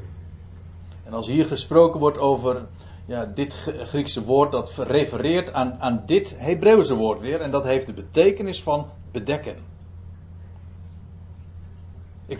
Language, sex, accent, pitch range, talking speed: Dutch, male, Dutch, 90-145 Hz, 125 wpm